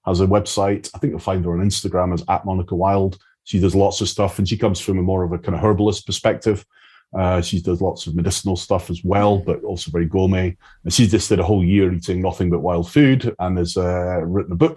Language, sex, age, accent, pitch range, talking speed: English, male, 30-49, British, 90-110 Hz, 250 wpm